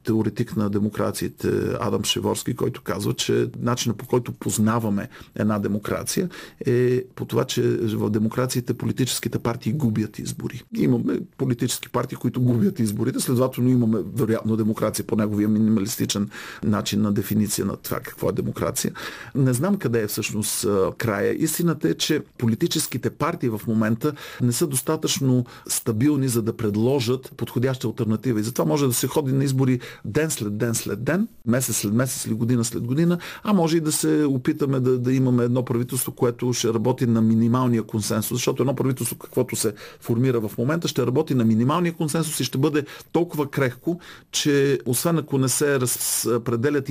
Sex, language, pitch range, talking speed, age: male, Bulgarian, 115-145 Hz, 165 wpm, 50-69